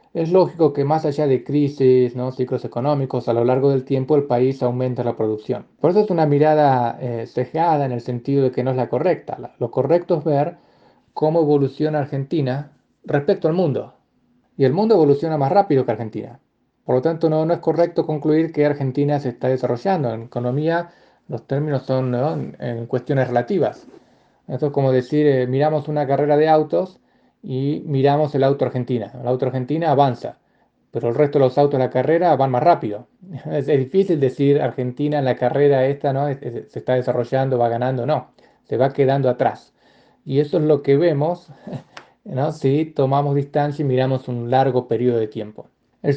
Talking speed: 185 wpm